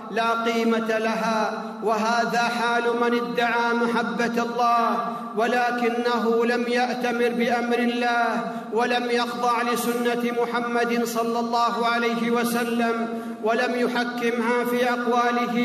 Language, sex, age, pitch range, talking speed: Arabic, male, 50-69, 200-235 Hz, 100 wpm